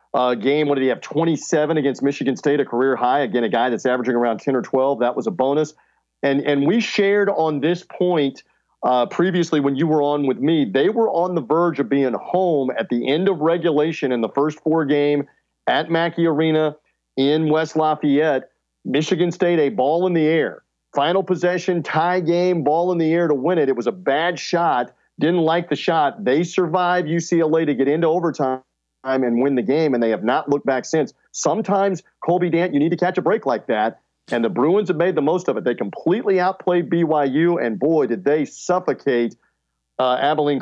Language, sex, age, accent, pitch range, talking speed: English, male, 40-59, American, 130-170 Hz, 210 wpm